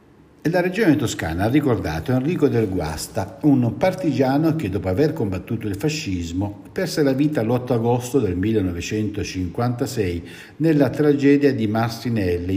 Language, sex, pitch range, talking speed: Italian, male, 95-140 Hz, 130 wpm